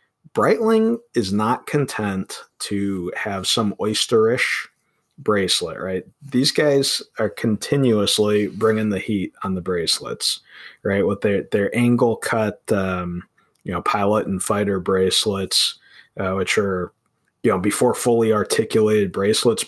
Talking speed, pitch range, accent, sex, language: 125 wpm, 95-120 Hz, American, male, English